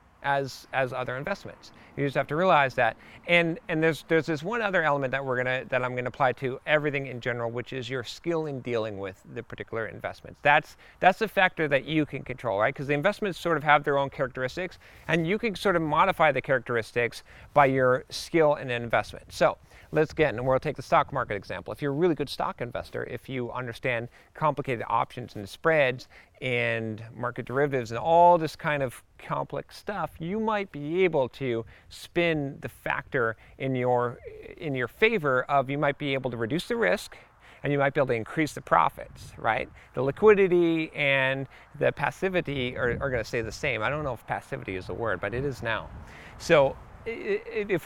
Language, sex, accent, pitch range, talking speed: English, male, American, 125-165 Hz, 205 wpm